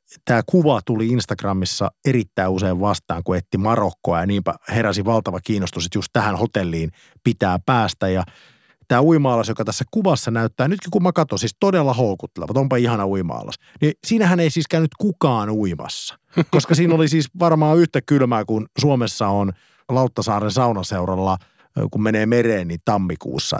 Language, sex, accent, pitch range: Finnish, male, native, 100-135 Hz